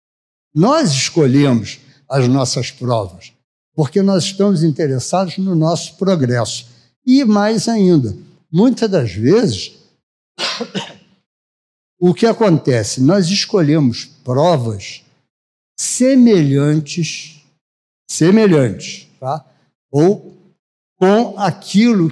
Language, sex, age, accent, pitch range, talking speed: Portuguese, male, 60-79, Brazilian, 135-185 Hz, 80 wpm